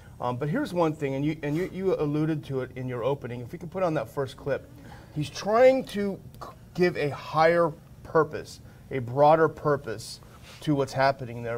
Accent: American